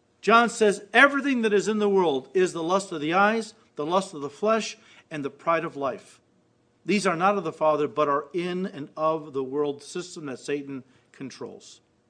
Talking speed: 205 wpm